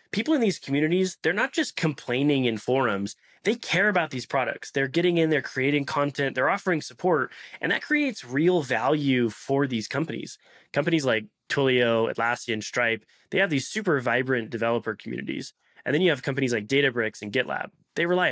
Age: 20-39